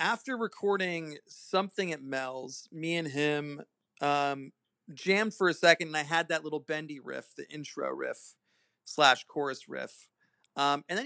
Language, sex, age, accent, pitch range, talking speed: English, male, 30-49, American, 135-175 Hz, 155 wpm